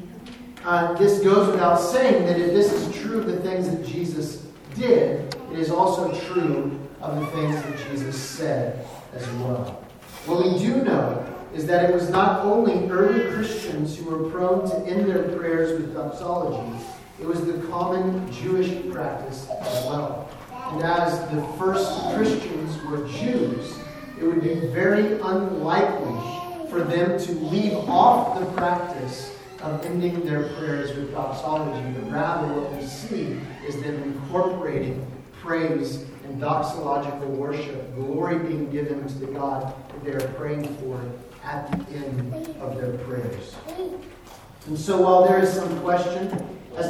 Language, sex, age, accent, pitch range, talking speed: English, male, 40-59, American, 145-185 Hz, 155 wpm